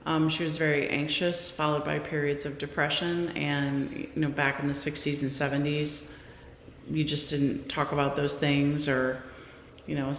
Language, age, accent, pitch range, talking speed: English, 30-49, American, 140-160 Hz, 170 wpm